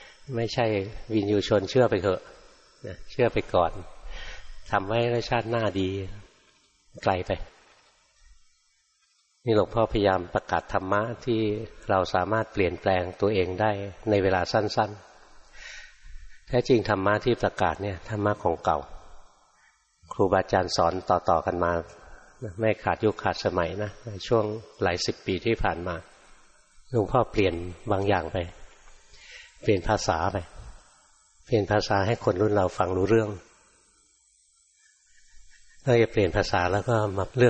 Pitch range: 95-110 Hz